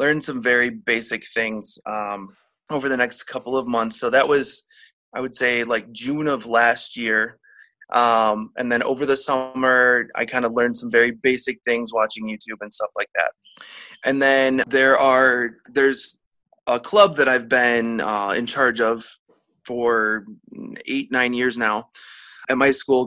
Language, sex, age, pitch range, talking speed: English, male, 20-39, 115-135 Hz, 170 wpm